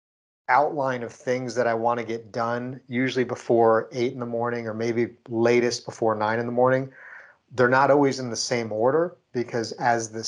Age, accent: 40-59, American